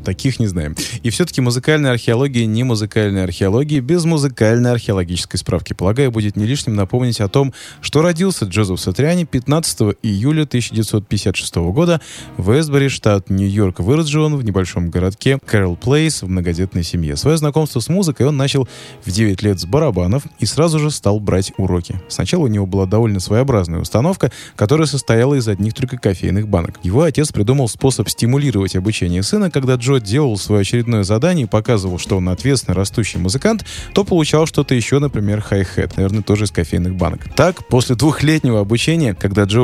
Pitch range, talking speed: 95-135 Hz, 170 wpm